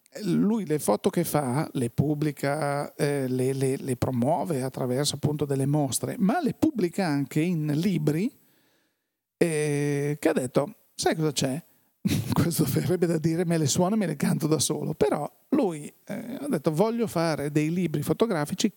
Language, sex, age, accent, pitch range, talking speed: Italian, male, 40-59, native, 140-185 Hz, 165 wpm